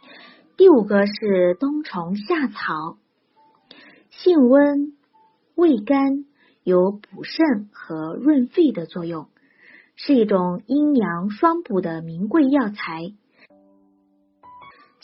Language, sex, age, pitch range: Chinese, female, 30-49, 190-290 Hz